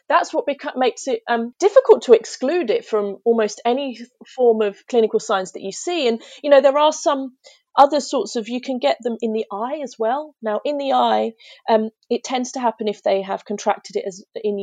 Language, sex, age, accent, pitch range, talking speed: English, female, 30-49, British, 205-265 Hz, 215 wpm